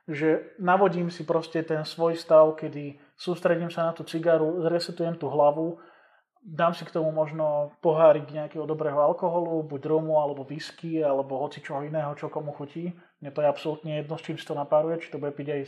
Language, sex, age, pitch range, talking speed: Slovak, male, 20-39, 145-165 Hz, 190 wpm